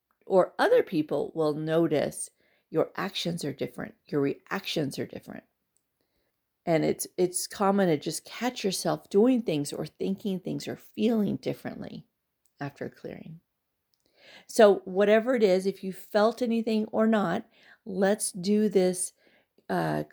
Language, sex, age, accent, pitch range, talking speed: English, female, 40-59, American, 165-210 Hz, 135 wpm